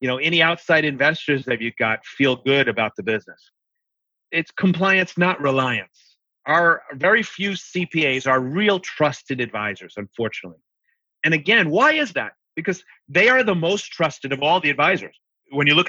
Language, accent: English, American